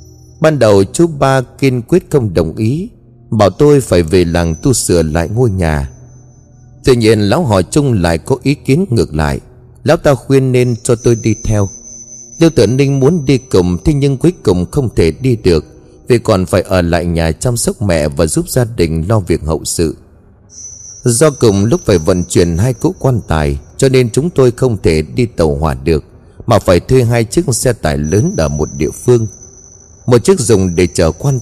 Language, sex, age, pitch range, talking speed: Vietnamese, male, 30-49, 85-130 Hz, 205 wpm